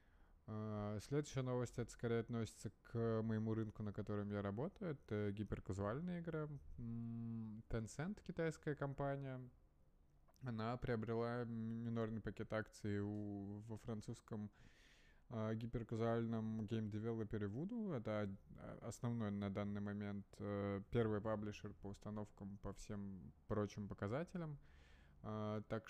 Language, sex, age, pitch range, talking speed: Russian, male, 20-39, 105-115 Hz, 110 wpm